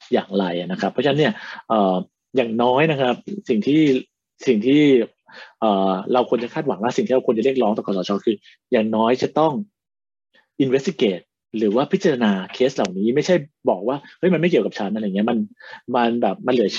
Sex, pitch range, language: male, 115-150 Hz, Thai